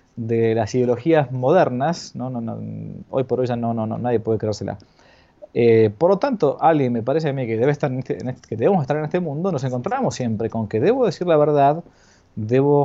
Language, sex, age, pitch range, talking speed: Spanish, male, 20-39, 120-160 Hz, 245 wpm